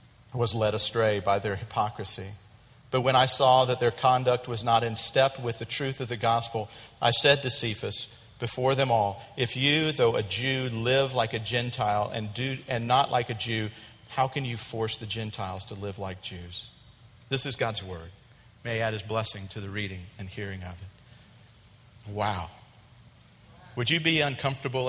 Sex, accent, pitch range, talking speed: male, American, 110-140 Hz, 185 wpm